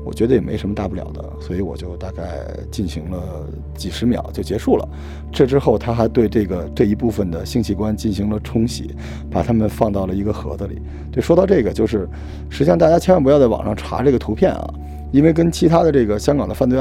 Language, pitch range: Chinese, 75-120 Hz